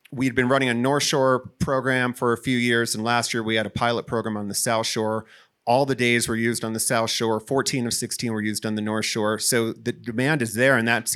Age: 30-49